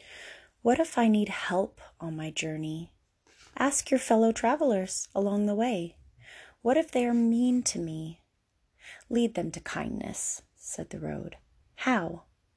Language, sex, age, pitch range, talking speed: English, female, 30-49, 175-235 Hz, 145 wpm